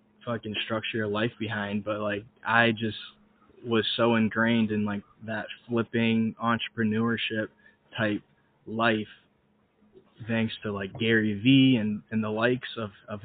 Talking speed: 135 wpm